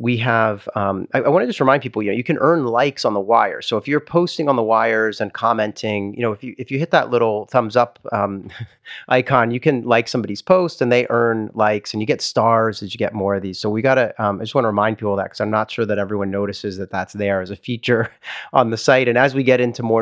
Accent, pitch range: American, 105-125 Hz